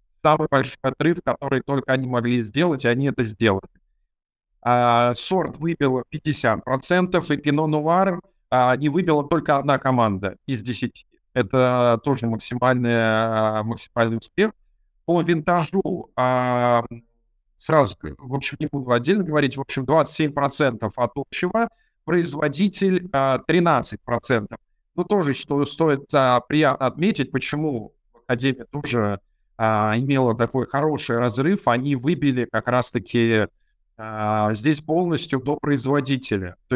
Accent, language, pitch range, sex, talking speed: native, Russian, 120-155 Hz, male, 120 wpm